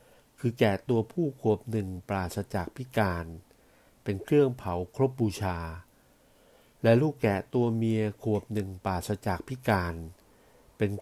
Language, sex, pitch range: Thai, male, 95-120 Hz